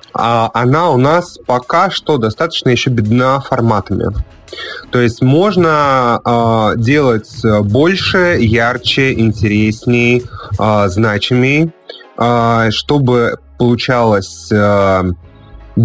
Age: 20-39